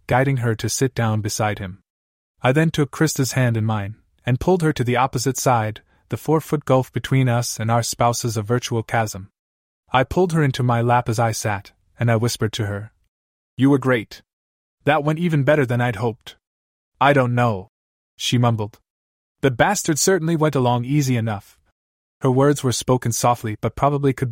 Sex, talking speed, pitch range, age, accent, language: male, 190 wpm, 105-135 Hz, 20-39, American, English